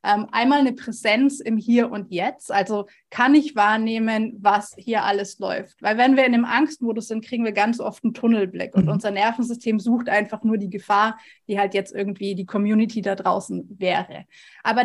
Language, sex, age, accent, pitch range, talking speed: German, female, 20-39, German, 210-245 Hz, 190 wpm